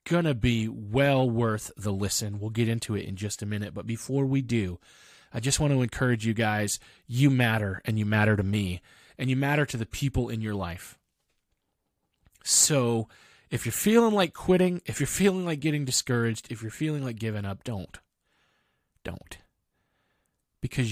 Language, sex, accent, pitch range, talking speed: English, male, American, 100-130 Hz, 180 wpm